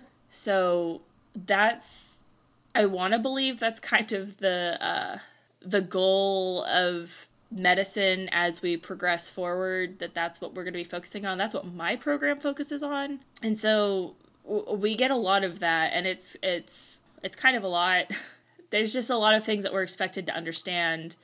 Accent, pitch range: American, 170-210 Hz